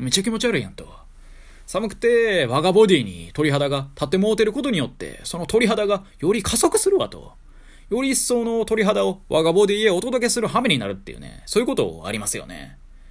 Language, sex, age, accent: Japanese, male, 20-39, native